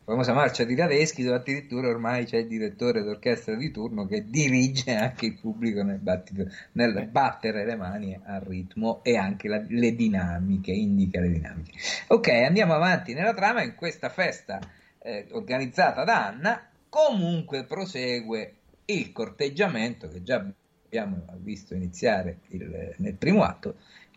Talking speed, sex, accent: 150 wpm, male, native